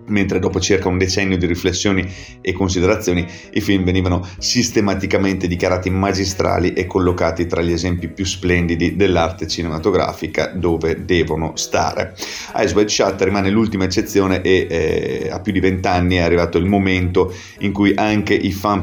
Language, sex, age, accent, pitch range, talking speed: Italian, male, 30-49, native, 90-100 Hz, 155 wpm